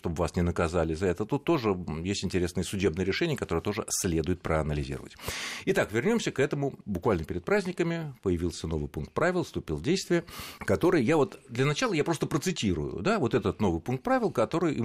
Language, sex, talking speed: Russian, male, 180 wpm